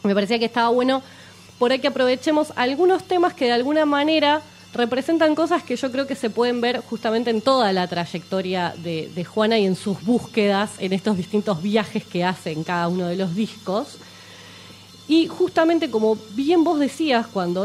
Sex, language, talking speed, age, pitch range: female, Spanish, 185 wpm, 20-39, 185-270 Hz